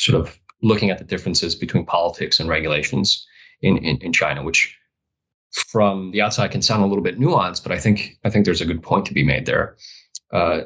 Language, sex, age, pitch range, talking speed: English, male, 20-39, 85-110 Hz, 215 wpm